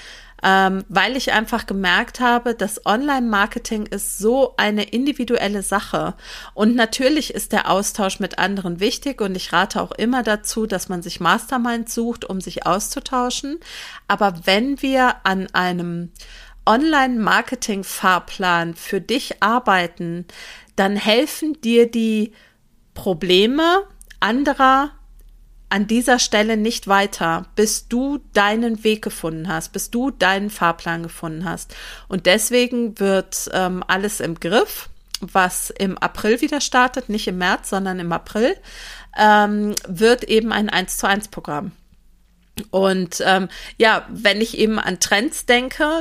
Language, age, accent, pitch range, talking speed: German, 40-59, German, 190-240 Hz, 130 wpm